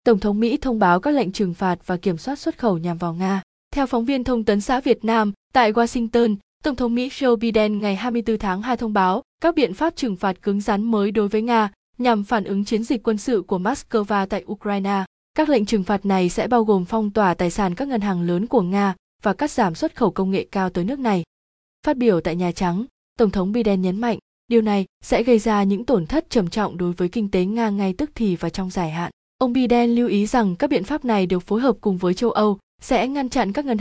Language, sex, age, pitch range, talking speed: Vietnamese, female, 20-39, 190-240 Hz, 250 wpm